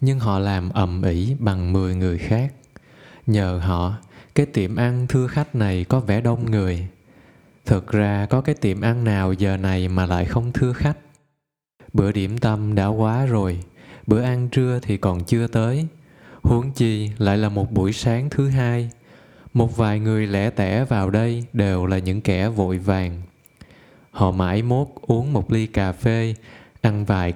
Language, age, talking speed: Vietnamese, 20-39, 175 wpm